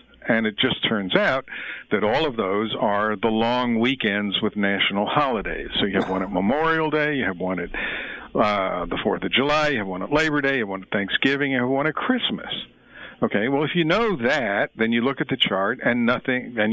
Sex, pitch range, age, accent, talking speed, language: male, 110-155 Hz, 60-79, American, 220 wpm, English